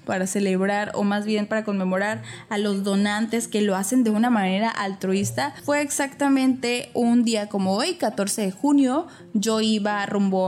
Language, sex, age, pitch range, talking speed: Spanish, female, 20-39, 200-235 Hz, 165 wpm